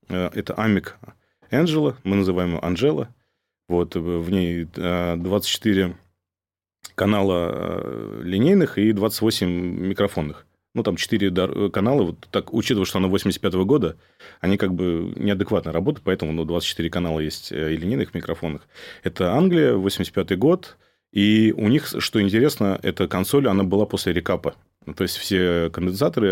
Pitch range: 85-100 Hz